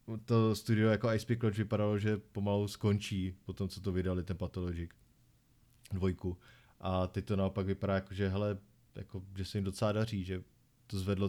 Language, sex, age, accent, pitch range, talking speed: Czech, male, 20-39, native, 95-110 Hz, 175 wpm